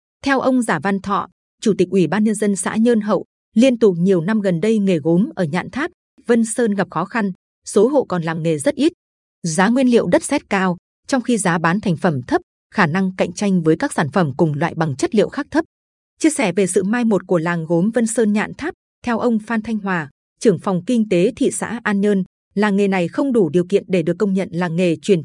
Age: 20-39